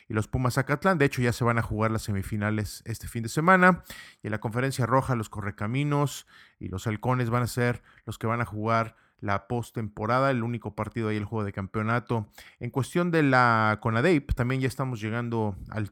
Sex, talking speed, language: male, 205 wpm, Spanish